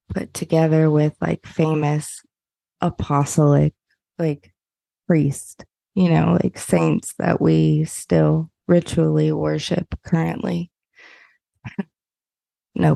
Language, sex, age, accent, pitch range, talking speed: English, female, 20-39, American, 150-185 Hz, 90 wpm